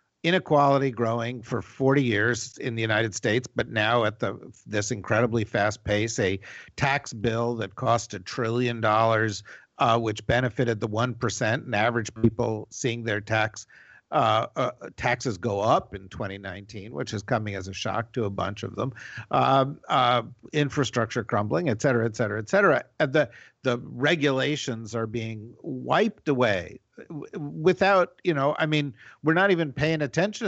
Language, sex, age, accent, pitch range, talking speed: English, male, 50-69, American, 110-135 Hz, 160 wpm